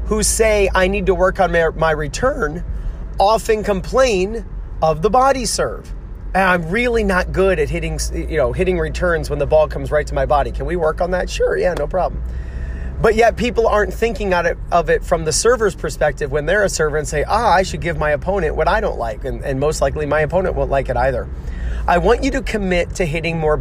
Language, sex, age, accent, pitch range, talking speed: English, male, 30-49, American, 140-185 Hz, 225 wpm